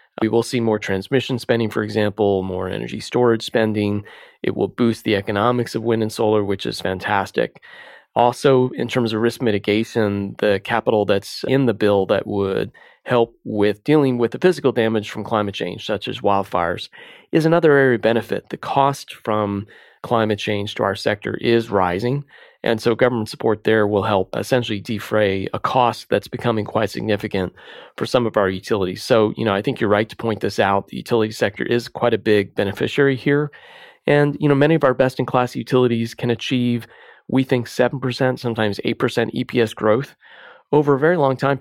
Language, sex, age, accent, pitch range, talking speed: English, male, 30-49, American, 105-130 Hz, 185 wpm